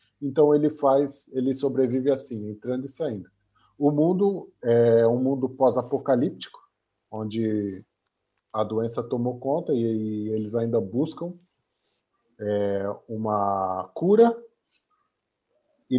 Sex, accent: male, Brazilian